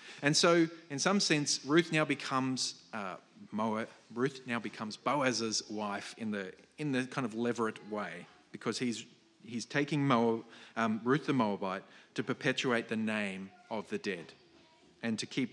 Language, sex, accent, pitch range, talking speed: English, male, Australian, 110-140 Hz, 160 wpm